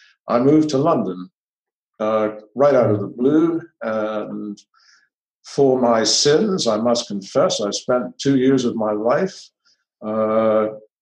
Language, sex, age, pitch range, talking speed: English, male, 50-69, 105-125 Hz, 135 wpm